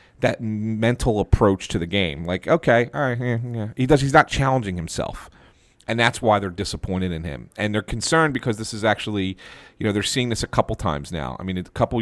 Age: 40-59